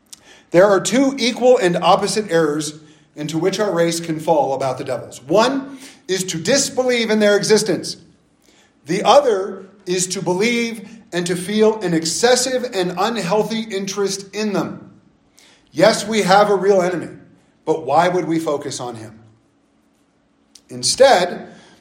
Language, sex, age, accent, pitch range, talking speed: English, male, 40-59, American, 150-215 Hz, 145 wpm